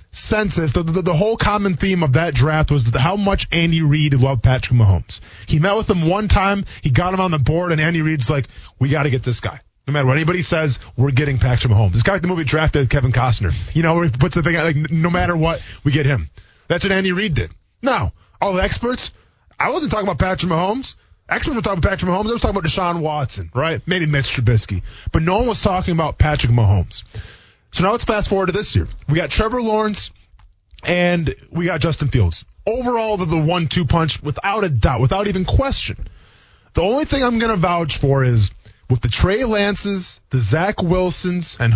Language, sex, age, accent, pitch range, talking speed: English, male, 20-39, American, 130-185 Hz, 225 wpm